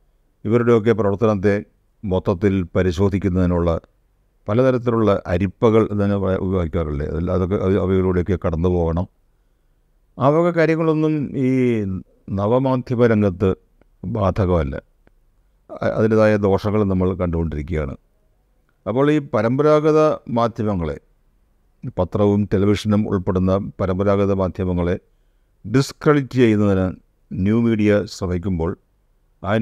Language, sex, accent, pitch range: Malayalam, male, native, 95-115 Hz